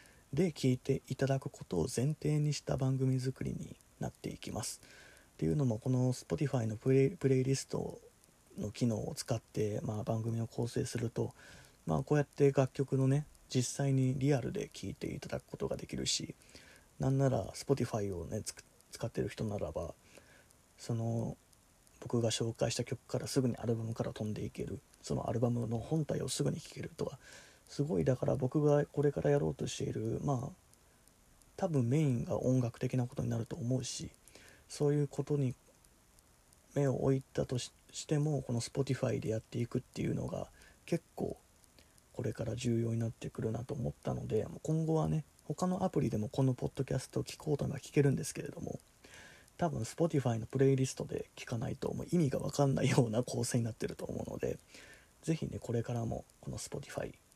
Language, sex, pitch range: Japanese, male, 115-145 Hz